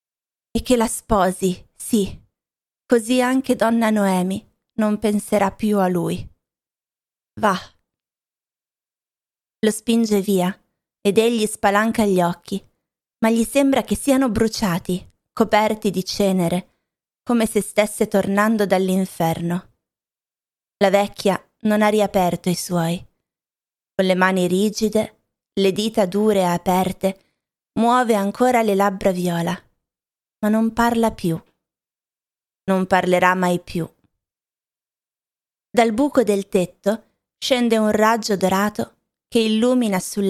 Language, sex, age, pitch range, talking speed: Italian, female, 20-39, 185-225 Hz, 115 wpm